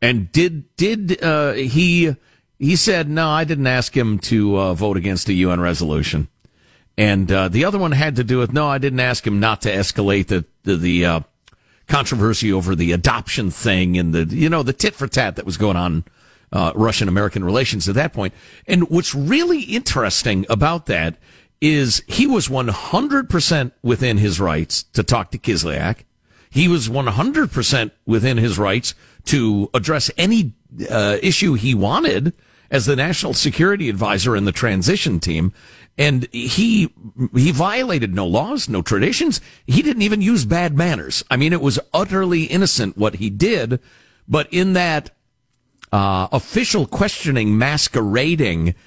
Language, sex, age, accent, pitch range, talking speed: English, male, 50-69, American, 100-155 Hz, 165 wpm